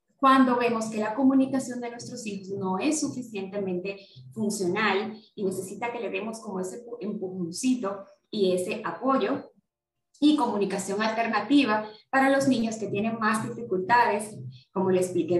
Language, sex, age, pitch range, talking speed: Spanish, female, 20-39, 190-240 Hz, 140 wpm